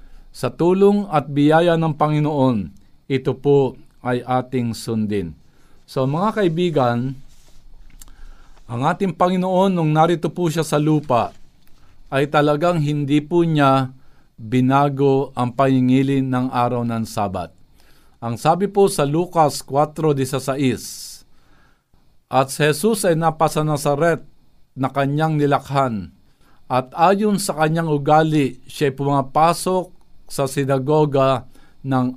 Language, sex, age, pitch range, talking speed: Filipino, male, 50-69, 130-160 Hz, 110 wpm